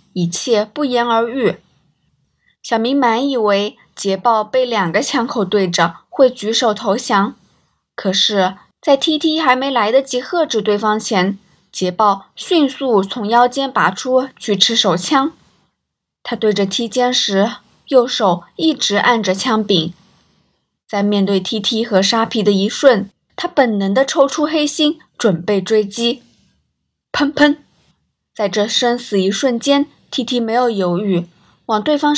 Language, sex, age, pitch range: Chinese, female, 20-39, 200-270 Hz